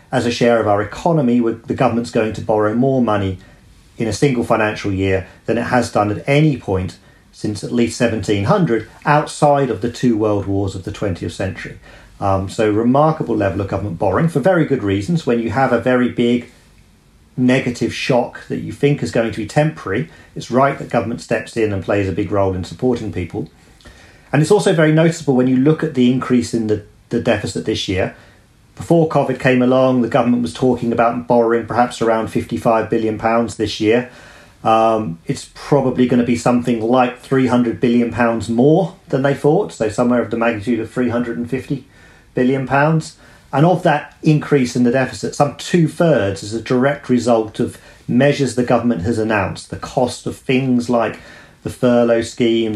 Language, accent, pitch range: English, British, 110-130 Hz